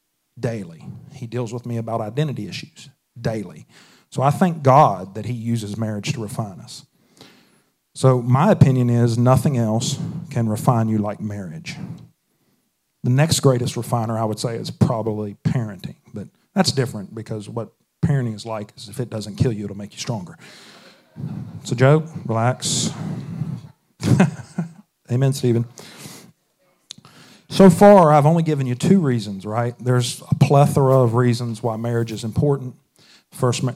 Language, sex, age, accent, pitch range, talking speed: English, male, 40-59, American, 115-145 Hz, 150 wpm